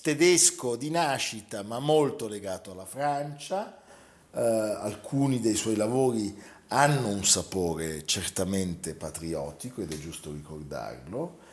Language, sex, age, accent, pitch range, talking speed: Italian, male, 50-69, native, 95-140 Hz, 115 wpm